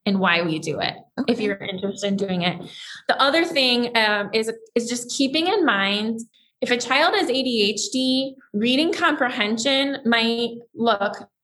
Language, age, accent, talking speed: English, 20-39, American, 155 wpm